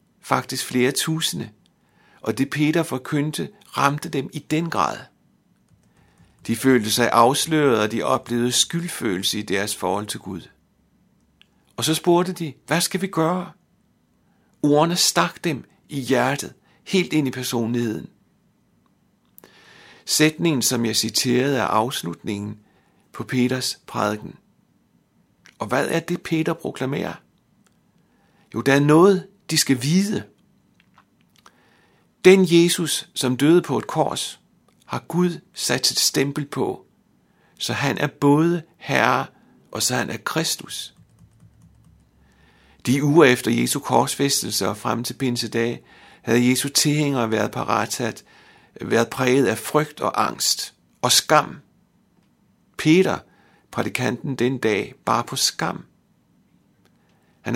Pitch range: 120-160 Hz